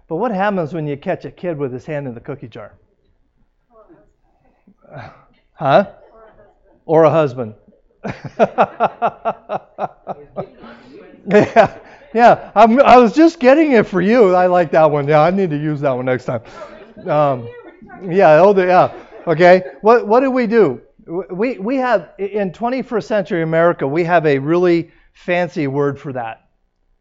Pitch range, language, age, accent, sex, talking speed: 145-200 Hz, English, 40-59, American, male, 150 wpm